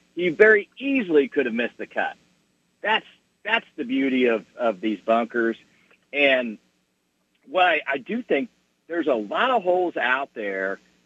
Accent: American